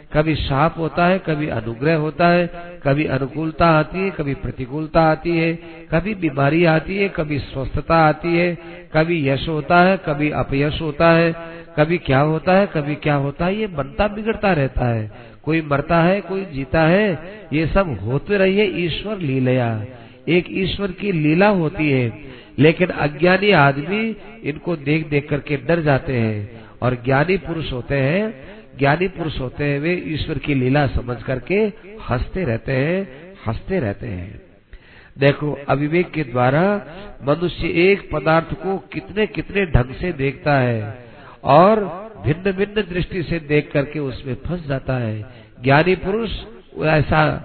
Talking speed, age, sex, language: 155 wpm, 50-69, male, Hindi